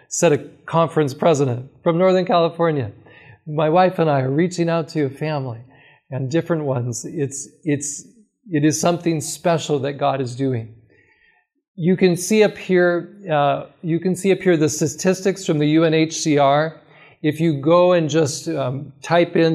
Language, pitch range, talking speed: English, 145-175 Hz, 165 wpm